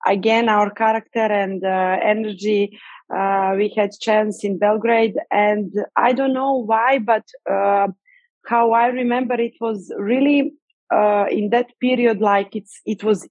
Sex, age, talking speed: female, 20-39, 150 wpm